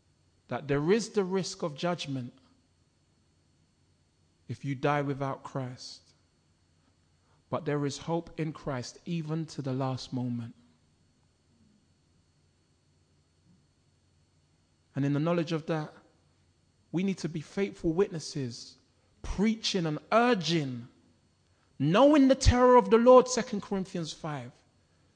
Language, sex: English, male